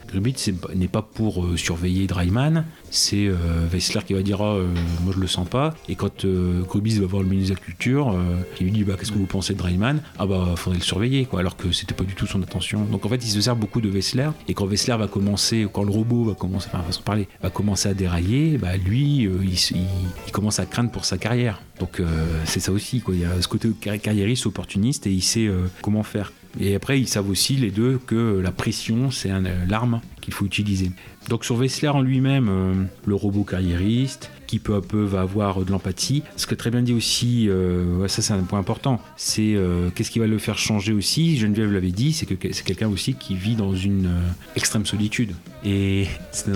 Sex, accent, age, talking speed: male, French, 40-59, 240 wpm